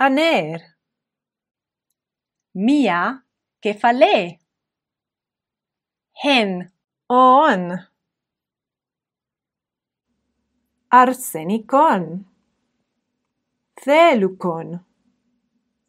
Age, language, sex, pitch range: 30-49, Greek, female, 175-265 Hz